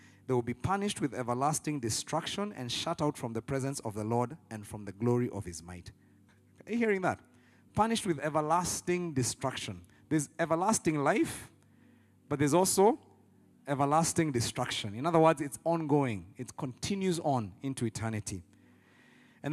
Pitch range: 105-150 Hz